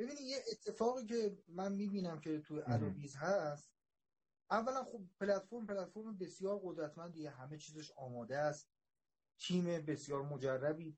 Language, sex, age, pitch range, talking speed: Persian, male, 30-49, 155-210 Hz, 125 wpm